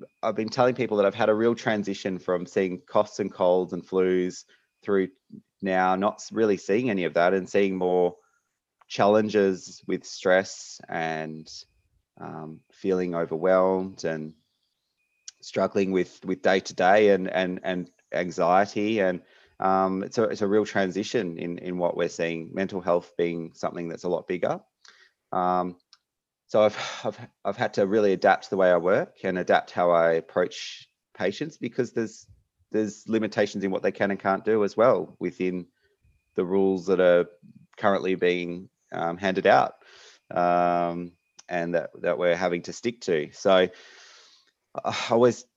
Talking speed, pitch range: 155 wpm, 85-100 Hz